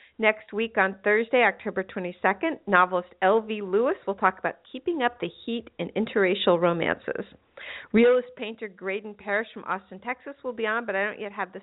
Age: 50-69